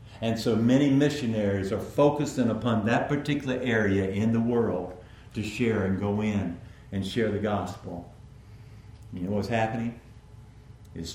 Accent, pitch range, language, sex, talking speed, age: American, 100-125 Hz, English, male, 145 wpm, 50-69